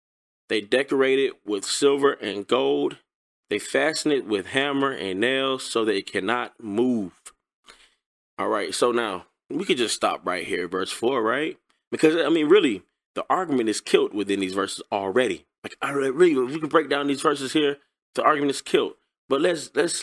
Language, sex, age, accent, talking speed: English, male, 20-39, American, 185 wpm